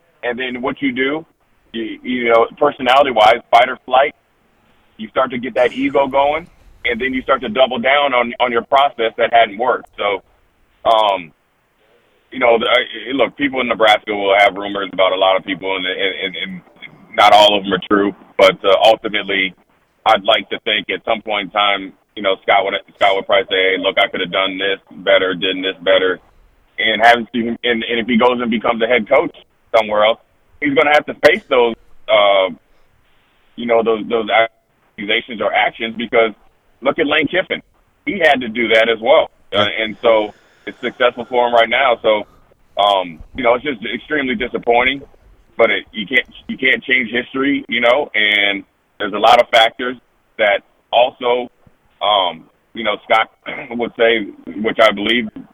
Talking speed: 190 wpm